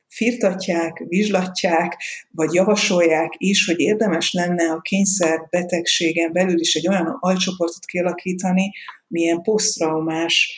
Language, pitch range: Hungarian, 165-185 Hz